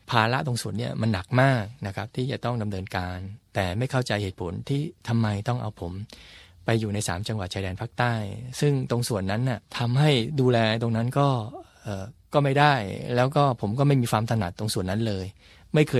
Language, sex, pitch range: Thai, male, 100-120 Hz